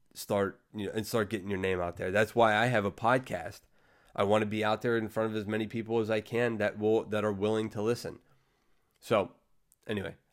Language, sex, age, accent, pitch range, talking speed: English, male, 30-49, American, 105-125 Hz, 230 wpm